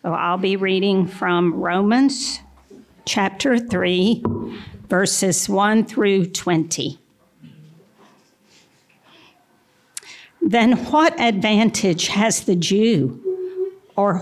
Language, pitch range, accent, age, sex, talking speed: English, 180-230 Hz, American, 50-69, female, 80 wpm